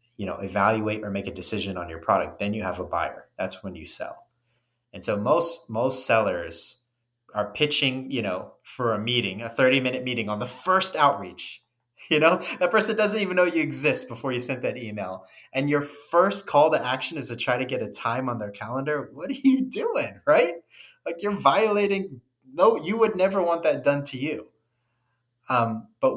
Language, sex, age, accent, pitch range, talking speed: English, male, 30-49, American, 105-135 Hz, 200 wpm